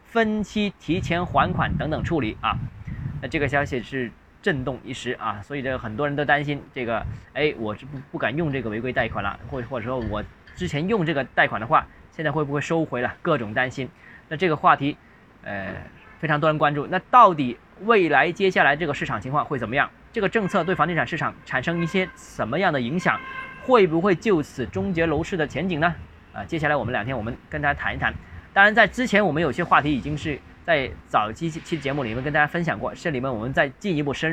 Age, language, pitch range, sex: 20-39, Chinese, 130-185 Hz, male